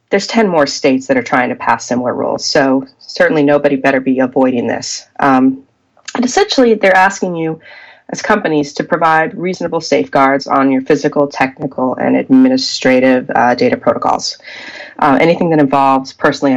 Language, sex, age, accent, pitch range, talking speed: English, female, 30-49, American, 135-170 Hz, 160 wpm